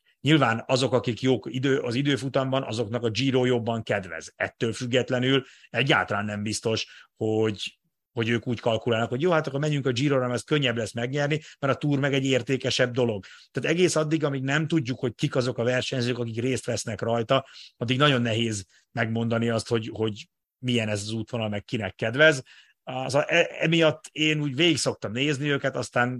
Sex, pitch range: male, 110-135 Hz